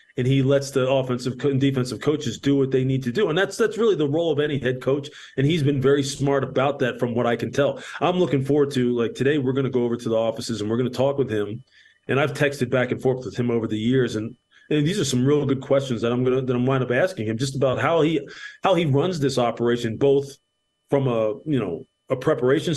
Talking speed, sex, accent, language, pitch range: 265 wpm, male, American, English, 125-150 Hz